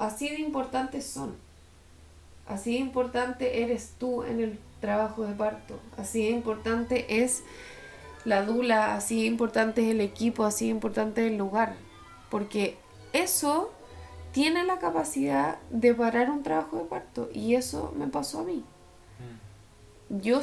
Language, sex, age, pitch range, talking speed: English, female, 20-39, 155-255 Hz, 145 wpm